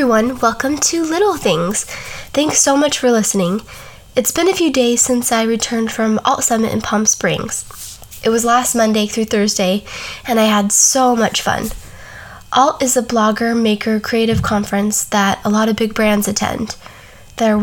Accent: American